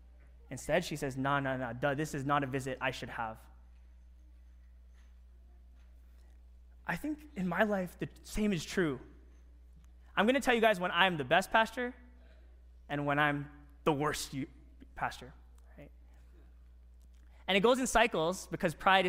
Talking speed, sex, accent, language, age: 150 wpm, male, American, English, 20-39